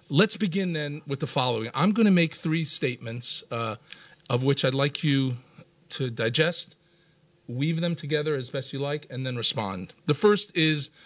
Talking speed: 180 wpm